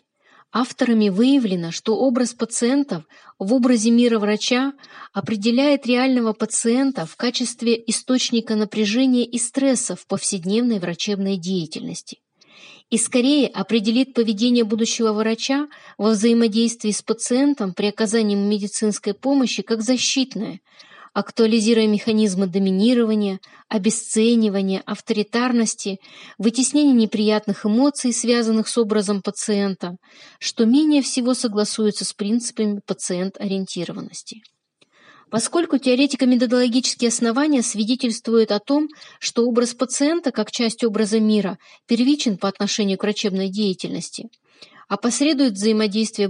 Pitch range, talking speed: 205-245 Hz, 100 wpm